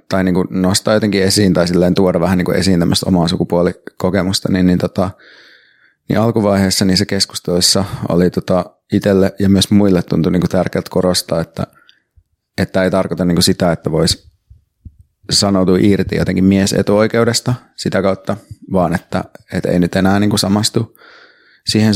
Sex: male